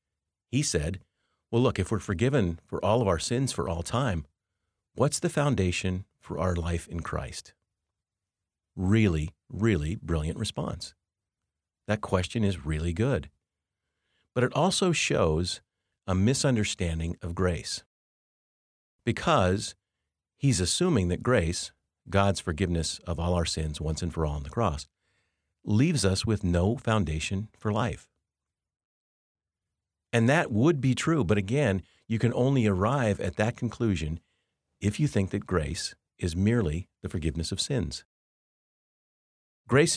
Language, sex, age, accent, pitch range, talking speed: English, male, 50-69, American, 85-110 Hz, 135 wpm